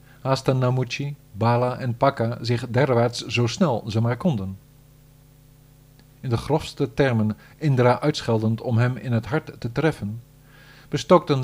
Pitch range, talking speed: 115-145 Hz, 135 wpm